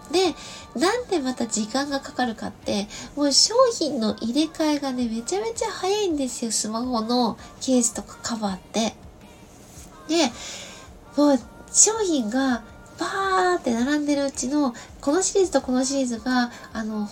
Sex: female